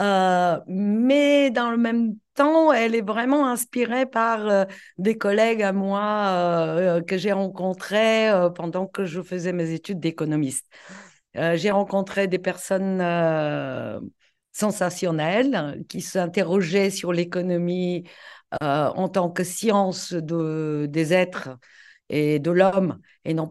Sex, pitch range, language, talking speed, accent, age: female, 175-220 Hz, French, 135 wpm, French, 50-69